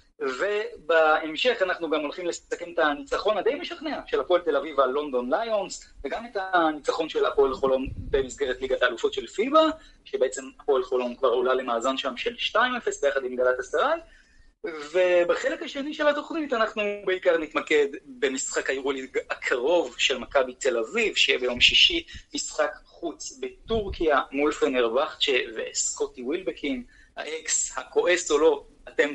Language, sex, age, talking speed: Hebrew, male, 30-49, 140 wpm